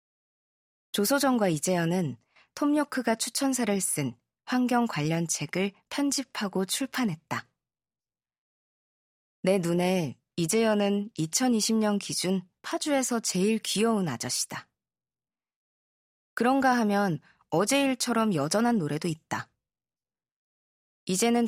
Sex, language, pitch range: female, Korean, 155-225 Hz